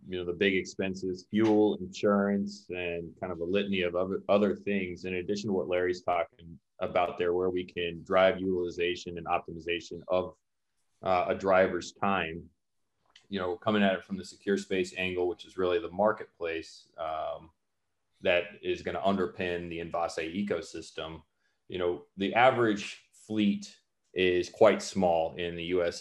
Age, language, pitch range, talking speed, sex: 30-49, English, 85-95 Hz, 165 wpm, male